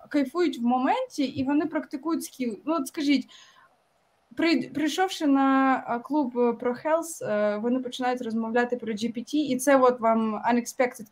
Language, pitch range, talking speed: Ukrainian, 235-280 Hz, 130 wpm